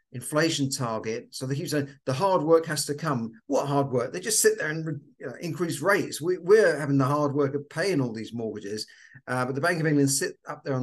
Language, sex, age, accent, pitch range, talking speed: English, male, 50-69, British, 125-150 Hz, 225 wpm